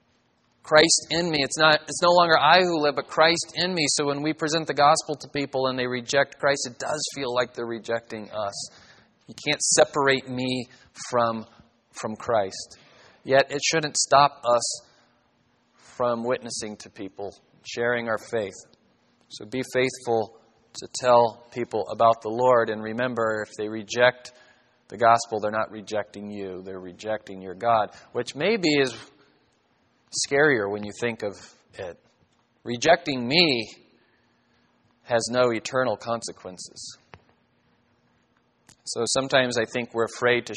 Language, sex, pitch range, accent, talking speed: English, male, 115-145 Hz, American, 145 wpm